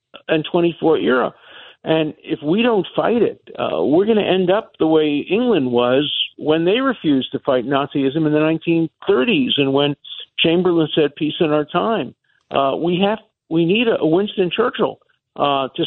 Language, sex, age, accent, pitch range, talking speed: English, male, 50-69, American, 135-180 Hz, 175 wpm